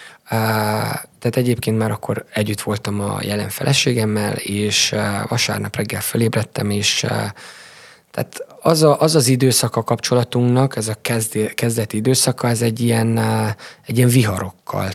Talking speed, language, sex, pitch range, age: 110 wpm, Hungarian, male, 105-125 Hz, 20-39